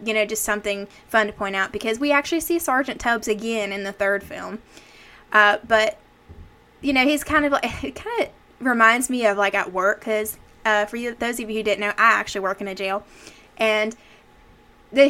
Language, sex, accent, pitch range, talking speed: English, female, American, 210-255 Hz, 205 wpm